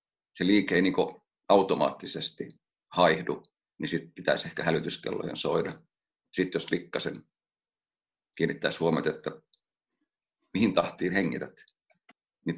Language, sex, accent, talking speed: Finnish, male, native, 105 wpm